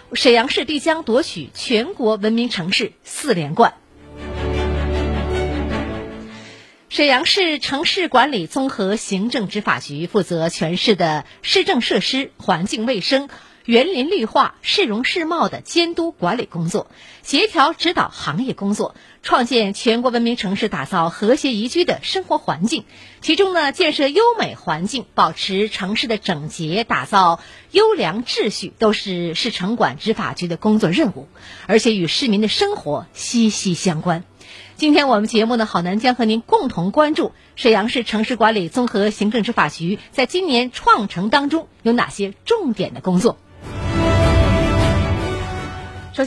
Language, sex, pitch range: Chinese, female, 175-270 Hz